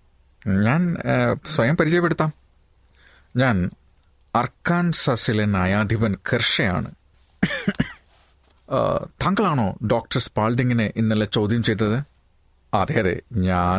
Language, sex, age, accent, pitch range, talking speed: Malayalam, male, 30-49, native, 100-130 Hz, 70 wpm